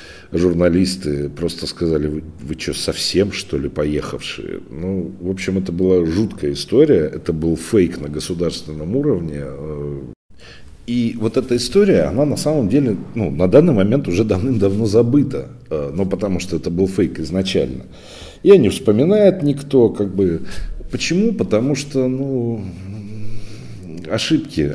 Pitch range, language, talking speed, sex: 80-115 Hz, Russian, 135 wpm, male